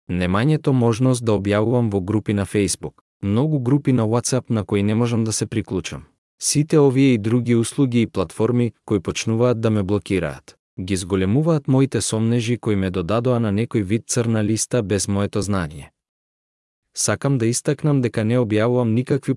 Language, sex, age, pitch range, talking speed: English, male, 30-49, 100-125 Hz, 165 wpm